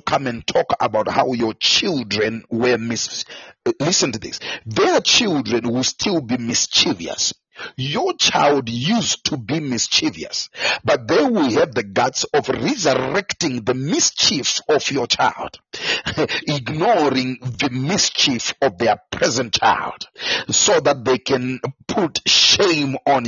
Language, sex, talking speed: English, male, 130 wpm